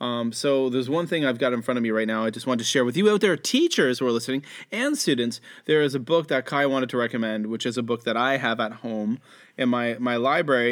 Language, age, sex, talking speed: English, 30-49, male, 280 wpm